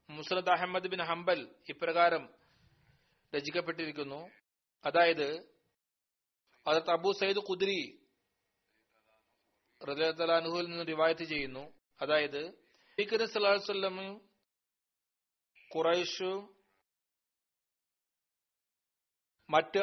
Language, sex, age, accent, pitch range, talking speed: Malayalam, male, 40-59, native, 170-200 Hz, 35 wpm